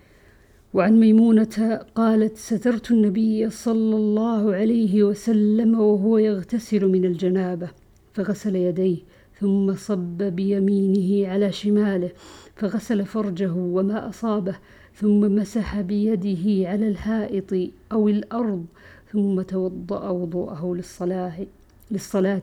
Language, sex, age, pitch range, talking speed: Arabic, female, 50-69, 190-215 Hz, 95 wpm